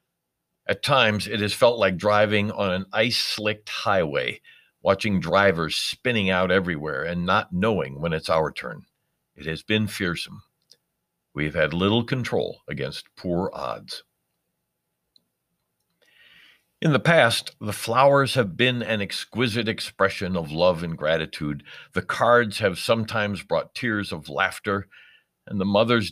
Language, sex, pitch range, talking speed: English, male, 90-120 Hz, 140 wpm